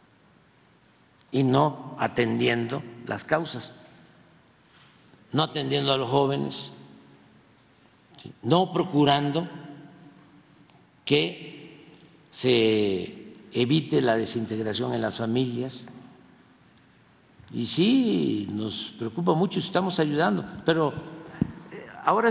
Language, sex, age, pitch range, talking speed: Spanish, male, 50-69, 115-170 Hz, 80 wpm